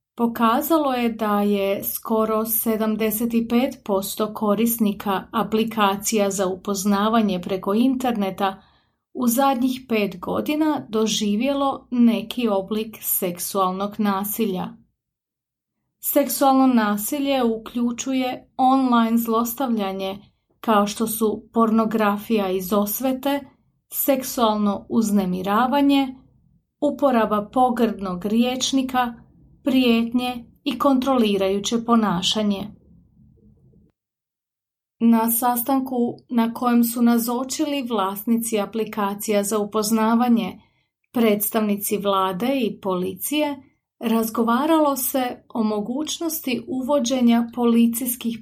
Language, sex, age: Croatian, female, 30-49